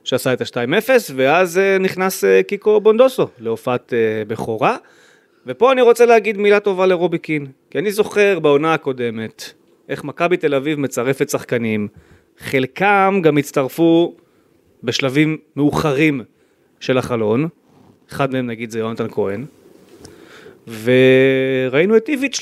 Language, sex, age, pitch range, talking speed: Hebrew, male, 30-49, 130-195 Hz, 120 wpm